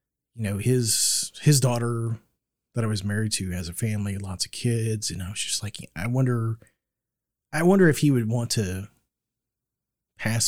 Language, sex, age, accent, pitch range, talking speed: English, male, 30-49, American, 105-135 Hz, 180 wpm